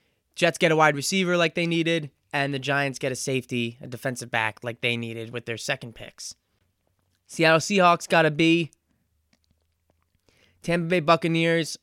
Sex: male